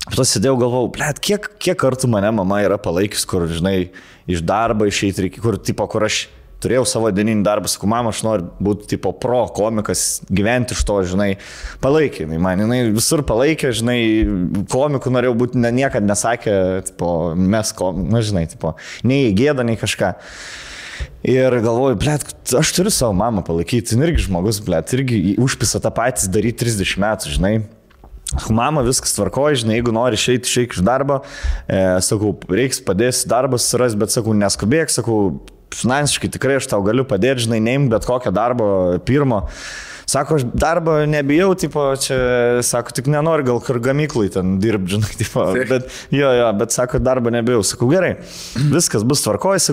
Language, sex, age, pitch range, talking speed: English, male, 20-39, 105-135 Hz, 165 wpm